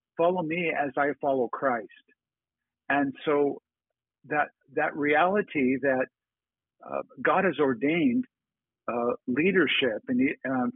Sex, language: male, English